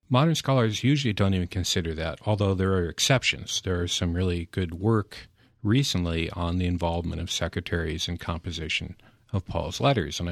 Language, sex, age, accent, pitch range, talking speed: English, male, 50-69, American, 90-115 Hz, 170 wpm